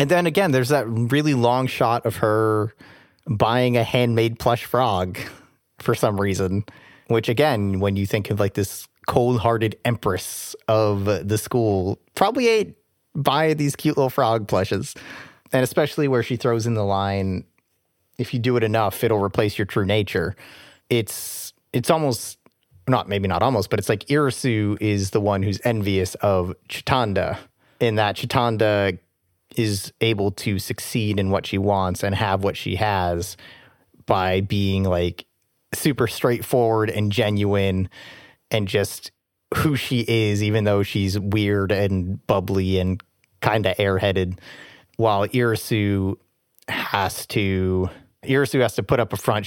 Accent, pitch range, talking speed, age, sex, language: American, 100-120 Hz, 150 wpm, 30-49, male, English